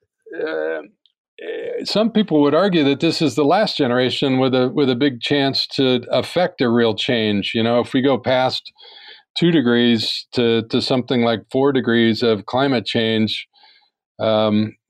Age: 50-69